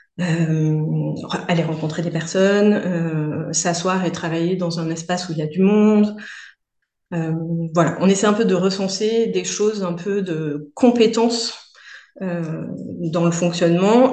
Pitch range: 160-190 Hz